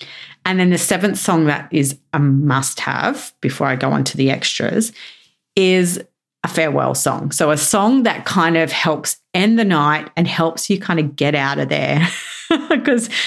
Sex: female